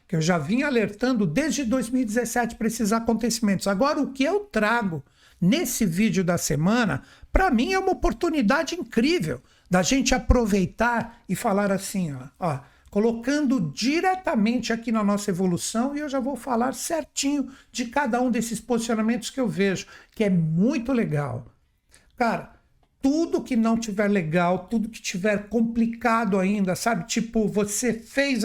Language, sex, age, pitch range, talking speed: Portuguese, male, 60-79, 205-255 Hz, 150 wpm